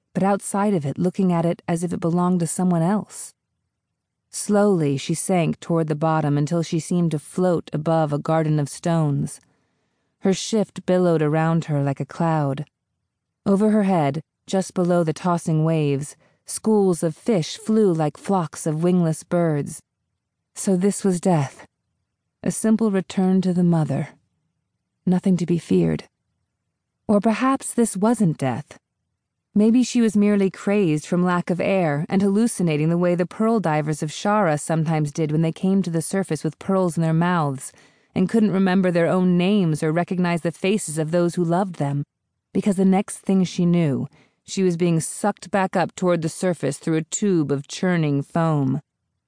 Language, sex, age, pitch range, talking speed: English, female, 30-49, 155-195 Hz, 170 wpm